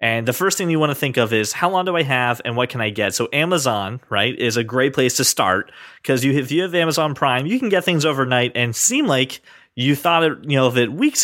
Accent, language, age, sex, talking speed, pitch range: American, English, 30-49, male, 280 wpm, 115-155 Hz